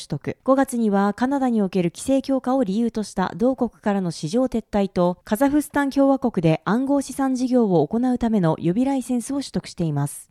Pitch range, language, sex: 190-260 Hz, Japanese, female